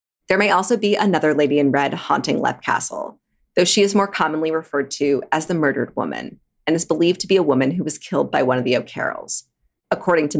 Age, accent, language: 30-49, American, English